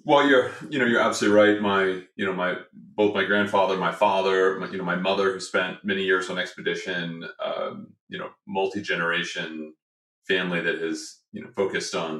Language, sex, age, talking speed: English, male, 30-49, 190 wpm